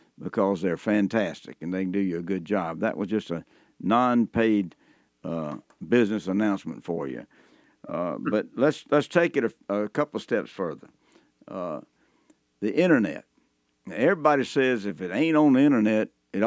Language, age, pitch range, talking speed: English, 60-79, 100-130 Hz, 165 wpm